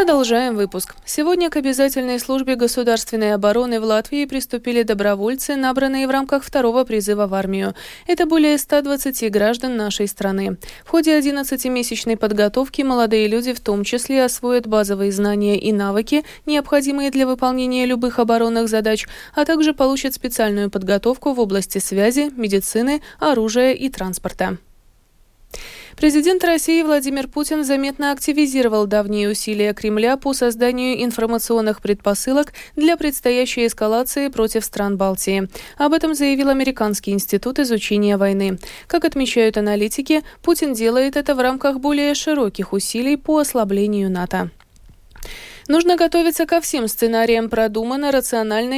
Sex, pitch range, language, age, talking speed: female, 215-280 Hz, Russian, 20-39, 130 wpm